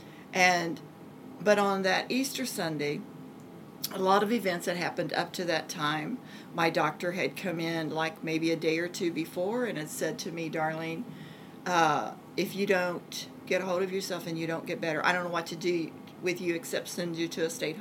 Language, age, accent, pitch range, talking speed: English, 40-59, American, 165-205 Hz, 210 wpm